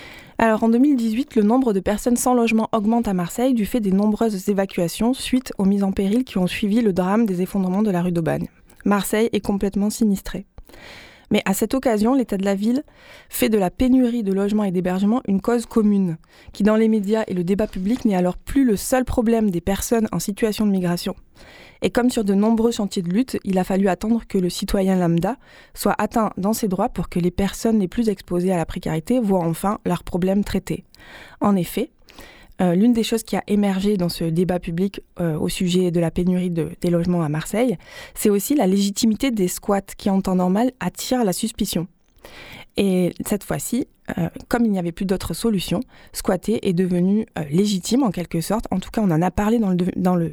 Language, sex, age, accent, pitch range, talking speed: French, female, 20-39, French, 185-225 Hz, 215 wpm